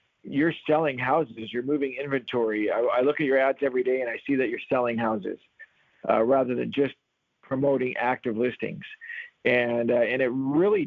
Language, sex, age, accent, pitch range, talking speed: English, male, 50-69, American, 115-135 Hz, 180 wpm